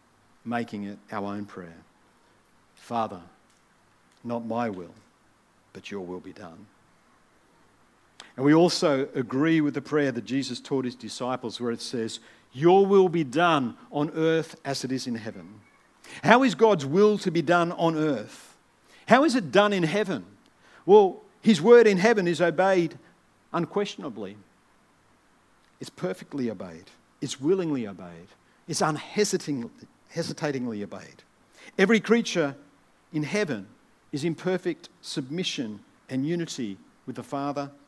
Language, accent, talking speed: English, Australian, 135 wpm